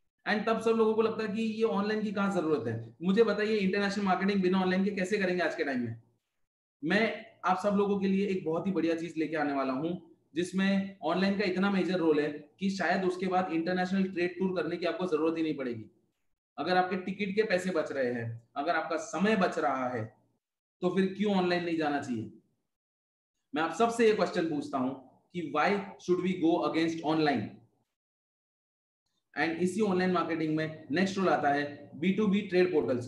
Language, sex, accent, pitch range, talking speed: Hindi, male, native, 155-200 Hz, 190 wpm